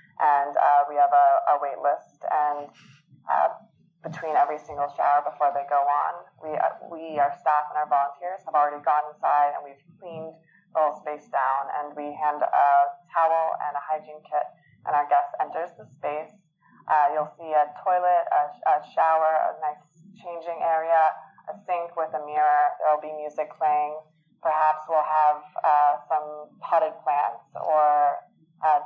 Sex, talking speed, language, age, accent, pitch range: female, 175 wpm, English, 20-39, American, 145-170 Hz